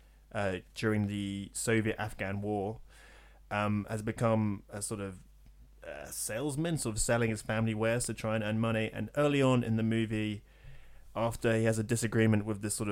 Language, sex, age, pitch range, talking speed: English, male, 20-39, 105-115 Hz, 175 wpm